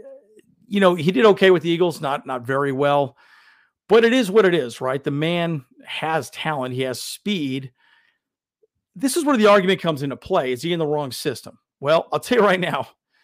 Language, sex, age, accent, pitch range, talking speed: English, male, 40-59, American, 130-160 Hz, 210 wpm